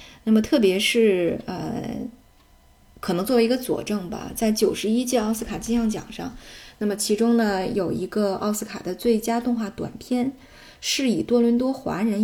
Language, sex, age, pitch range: Chinese, female, 20-39, 185-235 Hz